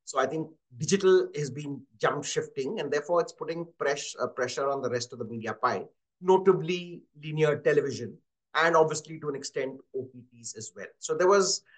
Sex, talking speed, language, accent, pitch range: male, 185 wpm, English, Indian, 125-170 Hz